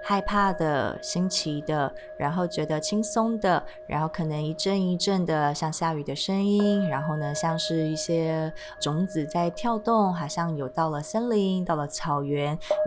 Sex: female